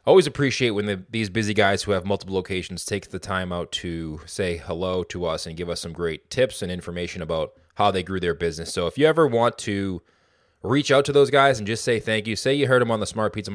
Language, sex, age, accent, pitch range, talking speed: English, male, 20-39, American, 90-120 Hz, 255 wpm